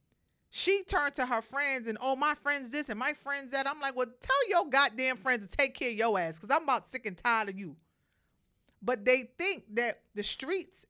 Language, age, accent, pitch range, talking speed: English, 40-59, American, 190-250 Hz, 225 wpm